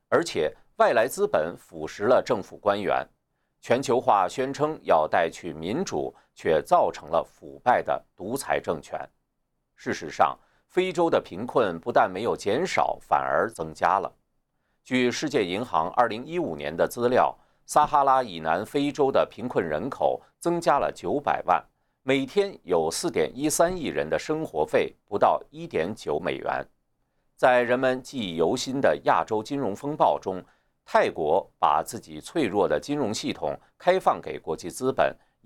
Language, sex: Chinese, male